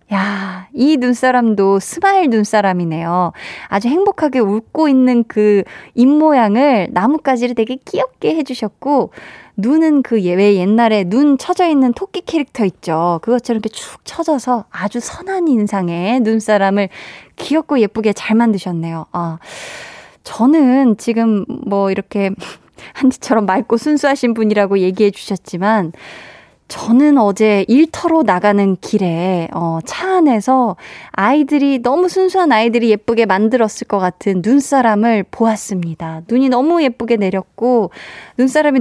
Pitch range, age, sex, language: 200-265 Hz, 20-39, female, Korean